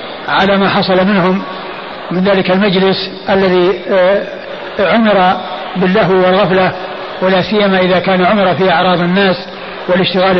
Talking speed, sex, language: 115 wpm, male, Arabic